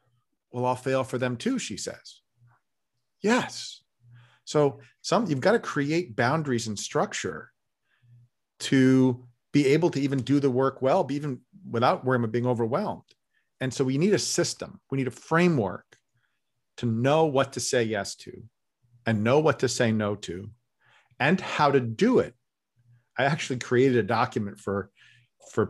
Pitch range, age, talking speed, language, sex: 115-145 Hz, 40-59, 160 wpm, English, male